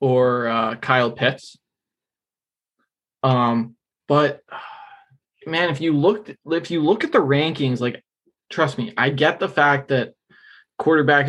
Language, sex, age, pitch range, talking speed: English, male, 20-39, 130-155 Hz, 135 wpm